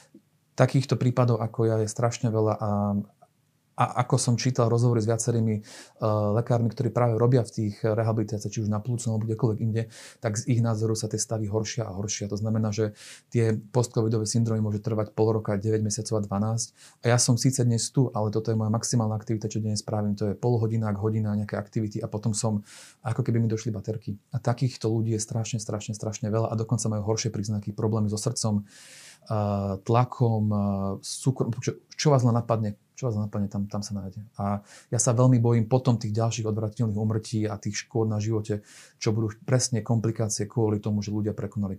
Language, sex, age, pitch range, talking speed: Slovak, male, 30-49, 105-120 Hz, 200 wpm